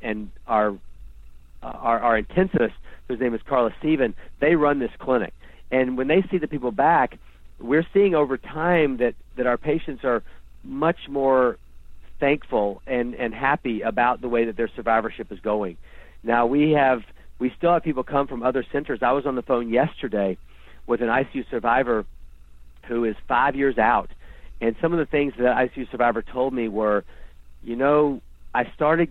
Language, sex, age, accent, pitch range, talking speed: English, male, 50-69, American, 110-135 Hz, 180 wpm